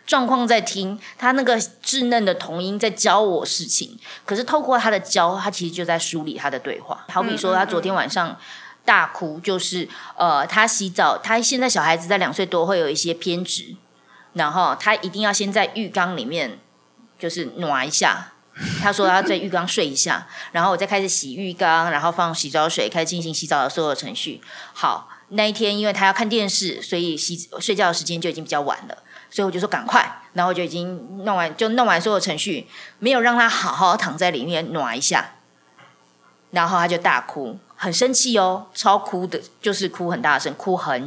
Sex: female